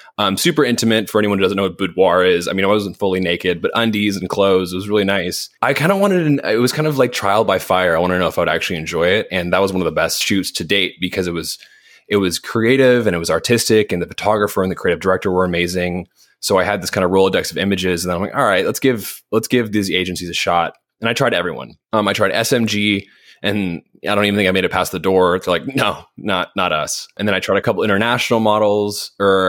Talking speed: 270 wpm